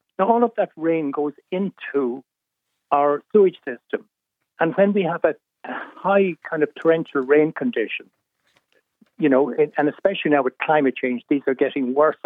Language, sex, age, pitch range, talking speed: English, male, 60-79, 140-175 Hz, 160 wpm